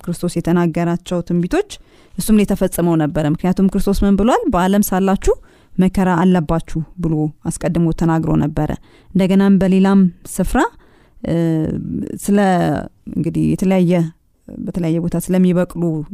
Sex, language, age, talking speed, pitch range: female, Amharic, 30-49, 95 wpm, 165-210 Hz